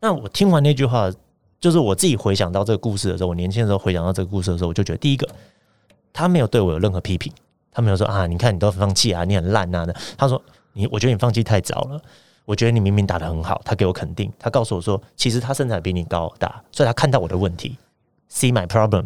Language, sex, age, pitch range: Chinese, male, 30-49, 95-130 Hz